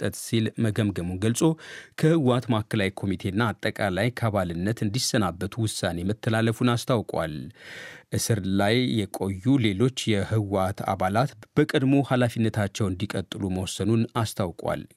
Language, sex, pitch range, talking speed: Amharic, male, 105-125 Hz, 95 wpm